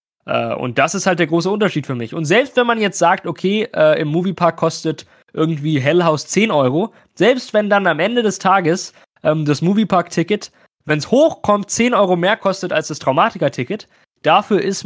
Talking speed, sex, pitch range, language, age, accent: 180 wpm, male, 145-180 Hz, German, 20-39, German